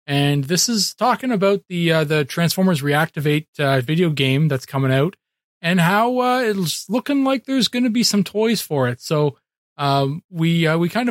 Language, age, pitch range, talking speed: English, 30-49, 140-175 Hz, 195 wpm